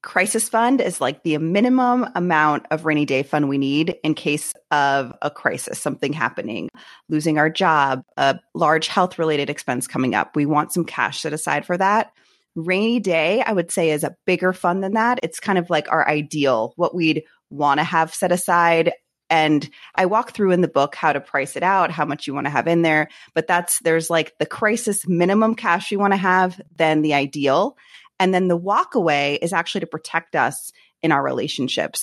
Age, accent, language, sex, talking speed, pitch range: 20-39, American, English, female, 205 wpm, 150-180 Hz